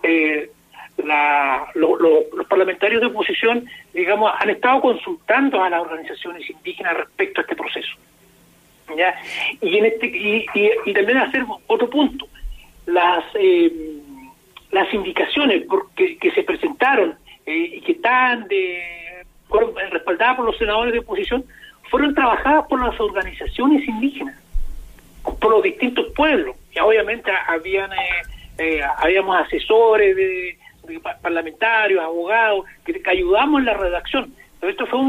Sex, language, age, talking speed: male, Spanish, 60-79, 135 wpm